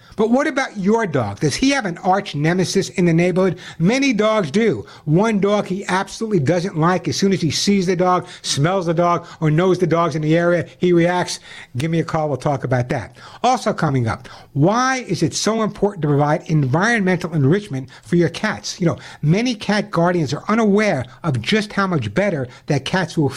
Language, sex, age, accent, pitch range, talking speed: English, male, 60-79, American, 155-195 Hz, 205 wpm